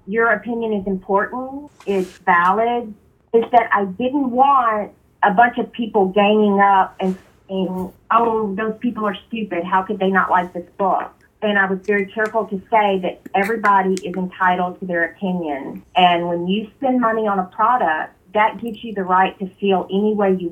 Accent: American